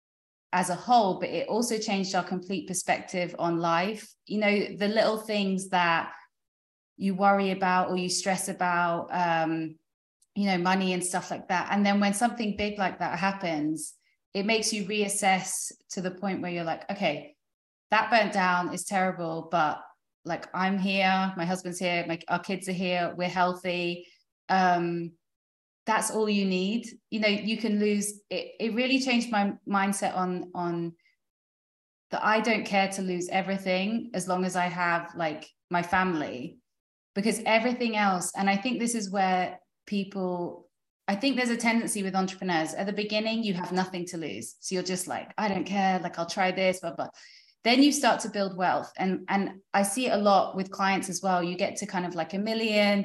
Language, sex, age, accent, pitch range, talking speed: English, female, 20-39, British, 180-205 Hz, 190 wpm